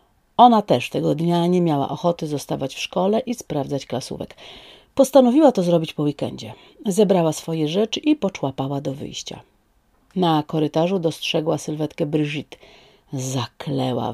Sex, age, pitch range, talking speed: female, 40-59, 150-190 Hz, 130 wpm